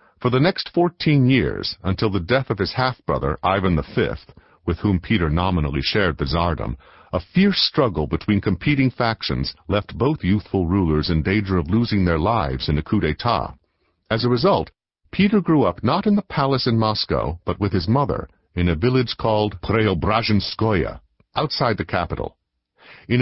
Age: 50-69